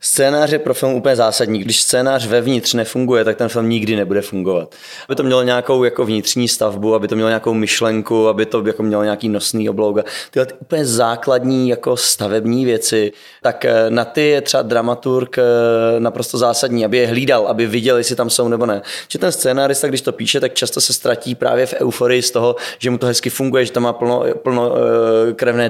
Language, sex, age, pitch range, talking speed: Czech, male, 20-39, 110-130 Hz, 200 wpm